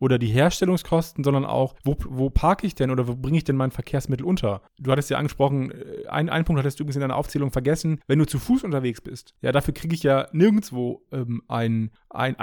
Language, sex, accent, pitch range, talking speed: English, male, German, 130-175 Hz, 215 wpm